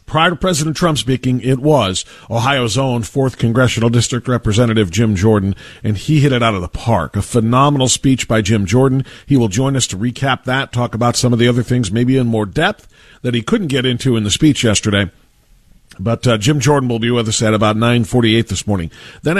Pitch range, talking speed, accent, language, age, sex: 115-145 Hz, 215 wpm, American, English, 50-69, male